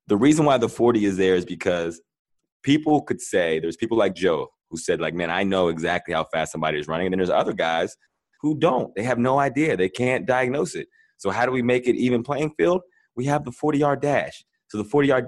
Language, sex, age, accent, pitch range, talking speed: English, male, 20-39, American, 90-125 Hz, 235 wpm